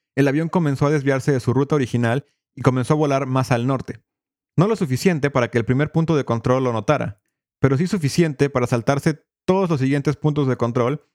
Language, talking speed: Spanish, 210 wpm